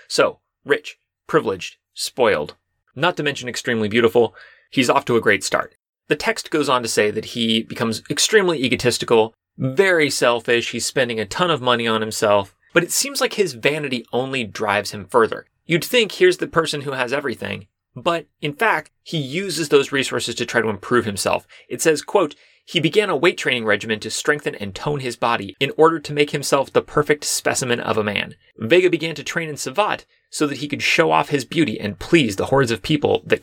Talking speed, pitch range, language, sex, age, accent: 205 wpm, 115-160 Hz, English, male, 30-49, American